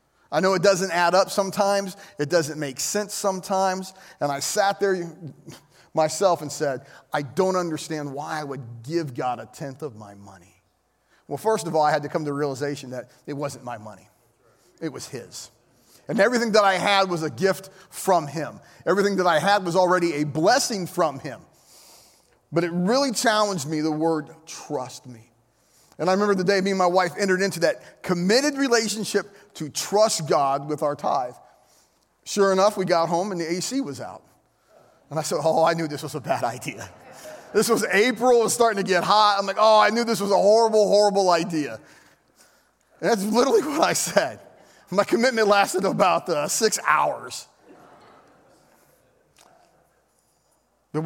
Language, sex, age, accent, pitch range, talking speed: English, male, 30-49, American, 145-200 Hz, 180 wpm